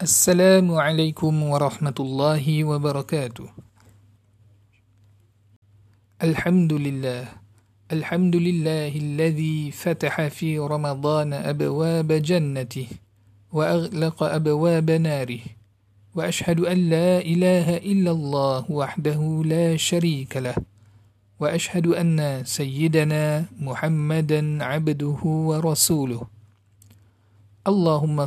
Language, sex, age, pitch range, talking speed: English, male, 50-69, 120-160 Hz, 75 wpm